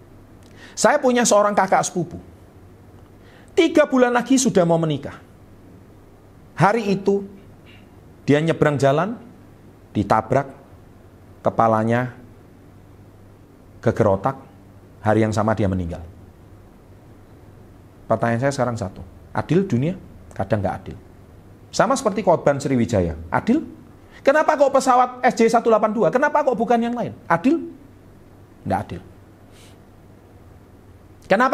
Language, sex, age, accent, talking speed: Indonesian, male, 40-59, native, 95 wpm